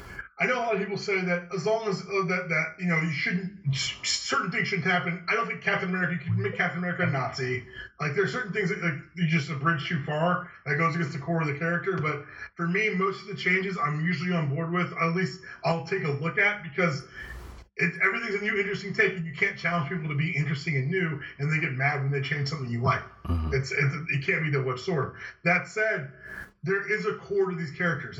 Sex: male